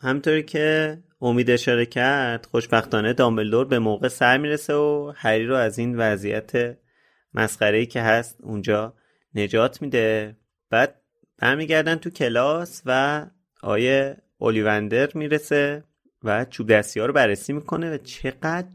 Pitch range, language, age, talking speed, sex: 110-145 Hz, Persian, 30-49, 130 wpm, male